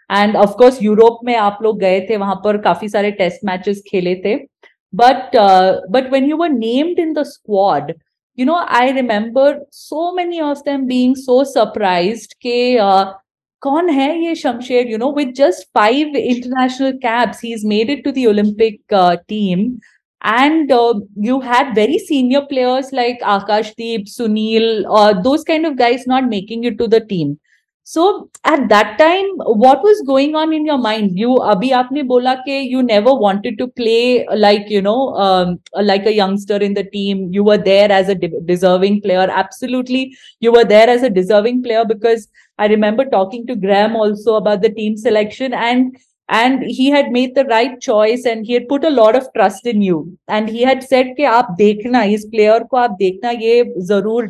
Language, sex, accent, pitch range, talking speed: English, female, Indian, 205-260 Hz, 180 wpm